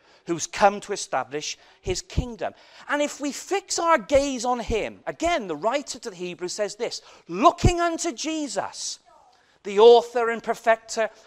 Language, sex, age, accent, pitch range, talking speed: English, male, 40-59, British, 200-285 Hz, 155 wpm